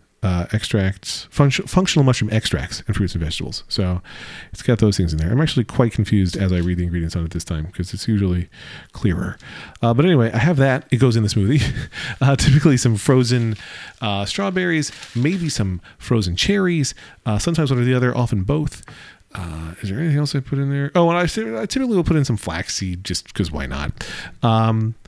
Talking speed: 205 wpm